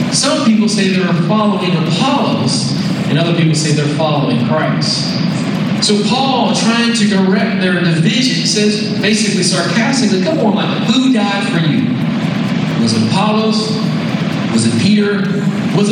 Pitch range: 190-220 Hz